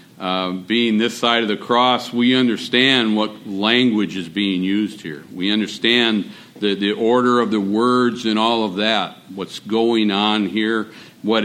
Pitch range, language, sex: 100-125 Hz, English, male